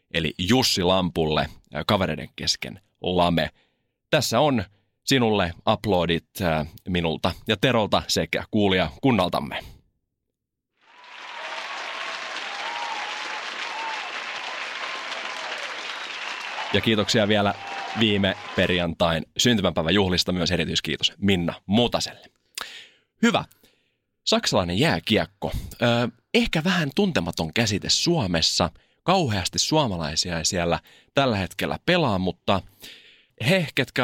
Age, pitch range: 30-49, 85-115 Hz